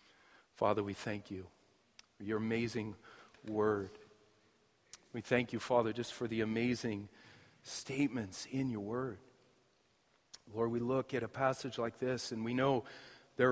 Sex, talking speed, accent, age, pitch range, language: male, 140 wpm, American, 40-59, 100-120 Hz, English